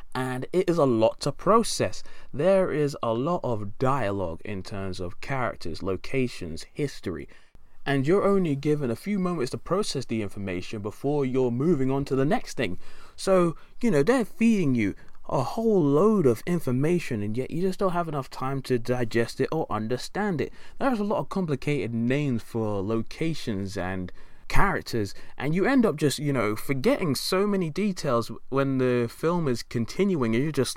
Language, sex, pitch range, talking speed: English, male, 110-175 Hz, 180 wpm